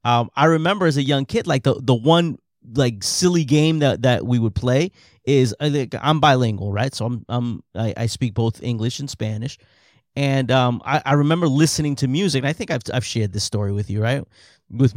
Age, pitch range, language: 30-49, 120-150 Hz, English